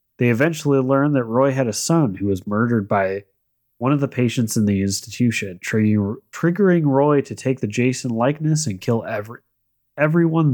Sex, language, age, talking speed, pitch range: male, English, 30-49, 175 wpm, 100-135 Hz